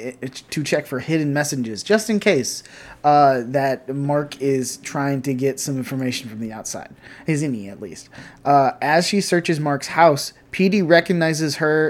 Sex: male